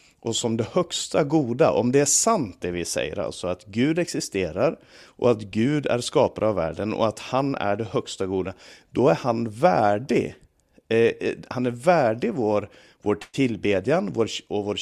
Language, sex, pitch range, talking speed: Swedish, male, 110-135 Hz, 180 wpm